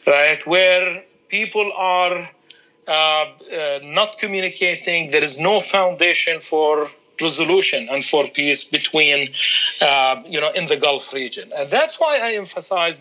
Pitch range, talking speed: 150-210 Hz, 140 wpm